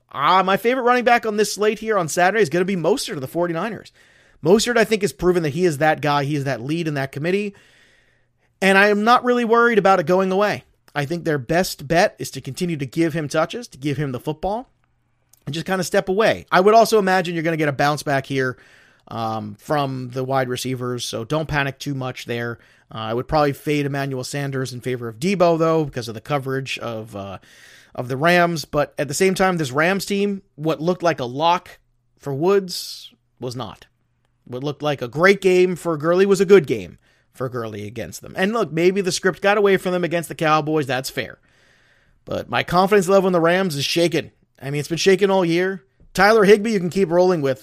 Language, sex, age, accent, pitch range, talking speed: English, male, 30-49, American, 135-190 Hz, 230 wpm